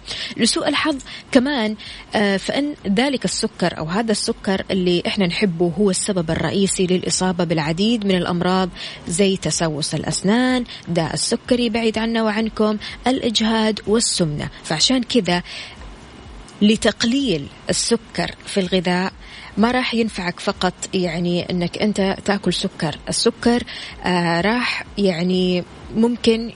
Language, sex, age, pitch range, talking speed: Arabic, female, 20-39, 185-230 Hz, 110 wpm